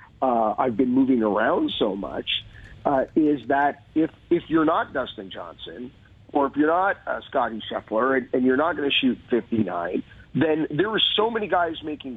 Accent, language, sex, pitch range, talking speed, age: American, English, male, 125-160 Hz, 180 wpm, 40-59